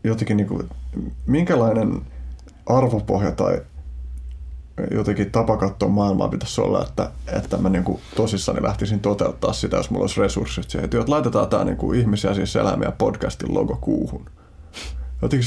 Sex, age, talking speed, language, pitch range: male, 20-39, 130 wpm, Finnish, 70-110 Hz